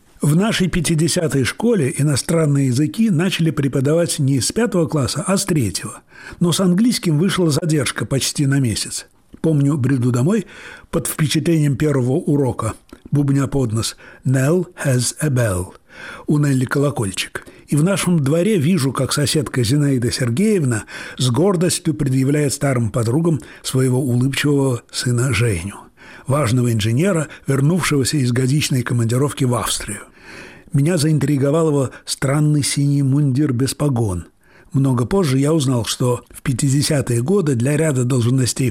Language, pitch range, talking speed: Russian, 125-160 Hz, 130 wpm